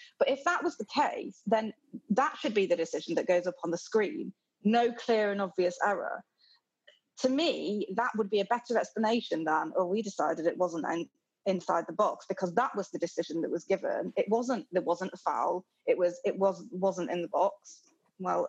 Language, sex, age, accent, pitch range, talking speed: English, female, 20-39, British, 185-255 Hz, 210 wpm